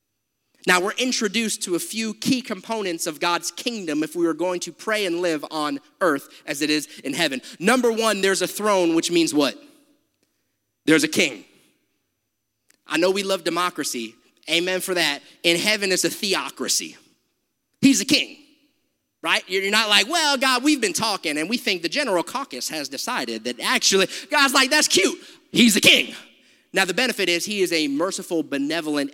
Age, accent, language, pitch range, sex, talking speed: 30-49, American, English, 195-275 Hz, male, 180 wpm